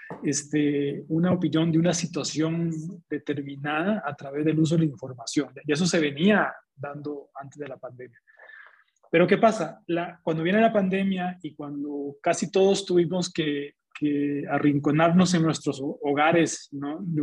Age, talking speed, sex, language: 30-49, 155 wpm, male, Spanish